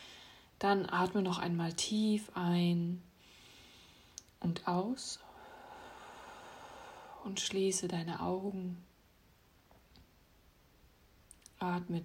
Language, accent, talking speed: German, German, 65 wpm